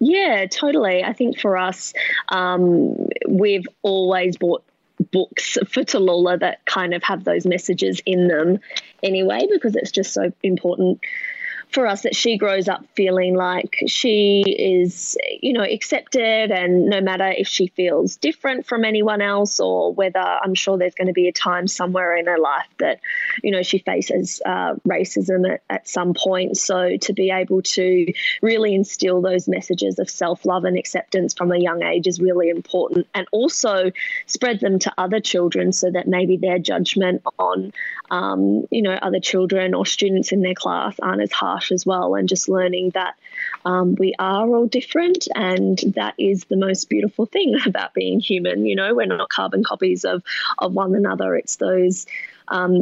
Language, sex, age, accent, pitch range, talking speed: English, female, 20-39, Australian, 180-205 Hz, 175 wpm